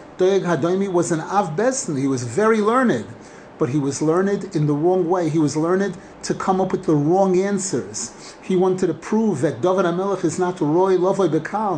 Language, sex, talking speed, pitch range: English, male, 200 wpm, 155-195 Hz